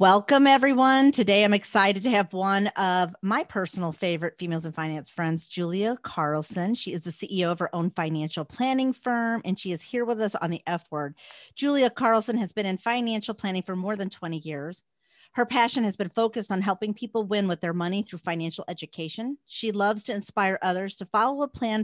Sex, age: female, 40-59